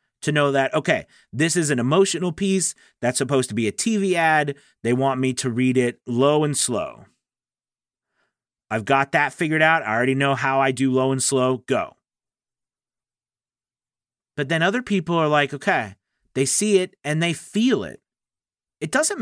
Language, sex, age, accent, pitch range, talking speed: English, male, 30-49, American, 110-140 Hz, 175 wpm